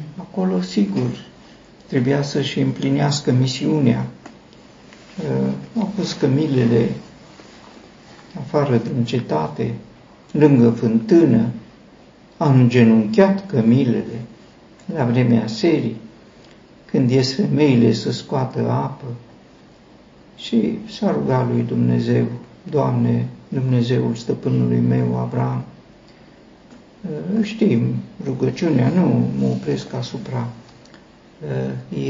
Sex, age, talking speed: male, 50-69, 80 wpm